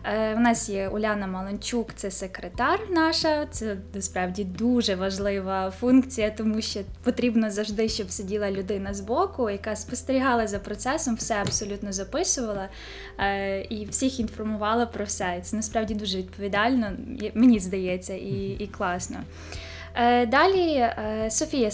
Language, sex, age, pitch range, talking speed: Ukrainian, female, 10-29, 200-235 Hz, 125 wpm